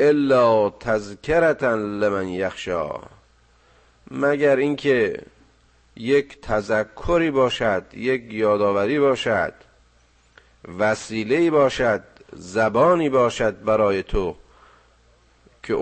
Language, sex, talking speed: Persian, male, 70 wpm